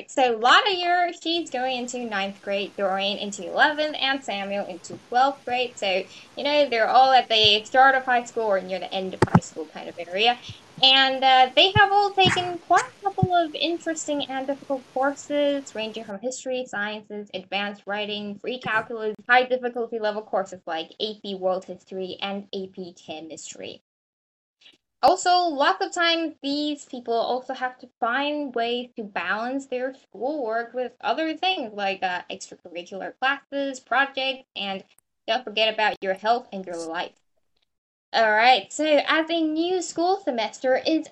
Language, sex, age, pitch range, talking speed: English, female, 10-29, 205-285 Hz, 165 wpm